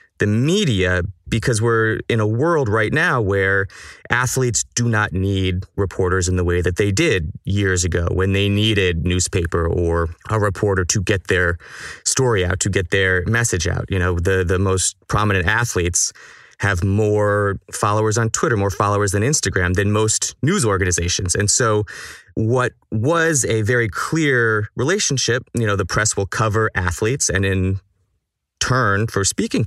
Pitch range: 95-115 Hz